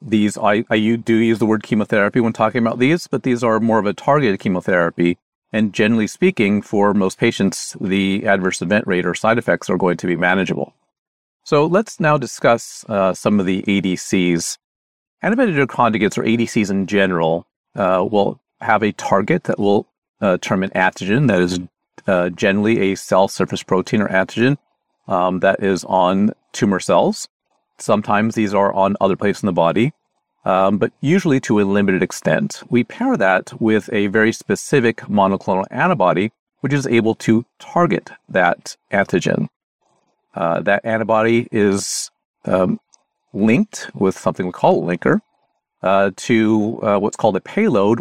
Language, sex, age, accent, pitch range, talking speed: English, male, 40-59, American, 95-115 Hz, 165 wpm